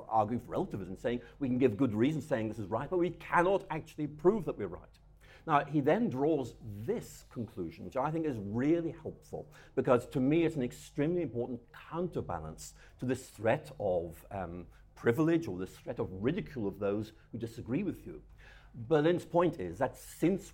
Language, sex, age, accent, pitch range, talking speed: English, male, 50-69, British, 110-165 Hz, 185 wpm